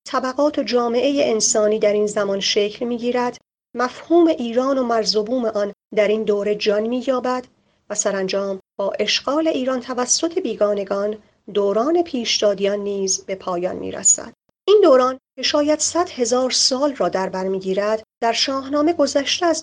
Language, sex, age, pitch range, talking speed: Persian, female, 40-59, 210-270 Hz, 155 wpm